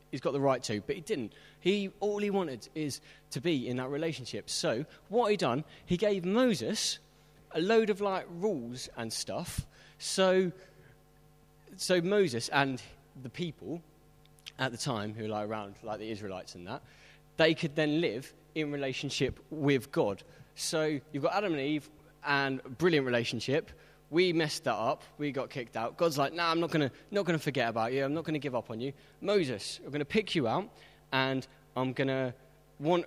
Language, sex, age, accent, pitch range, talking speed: English, male, 20-39, British, 125-160 Hz, 195 wpm